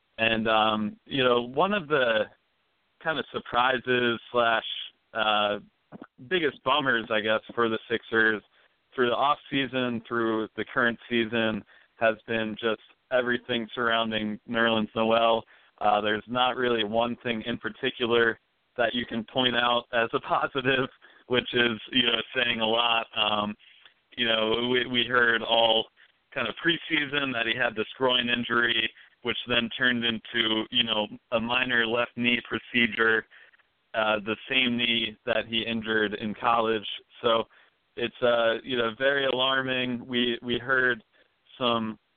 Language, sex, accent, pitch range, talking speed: English, male, American, 110-125 Hz, 150 wpm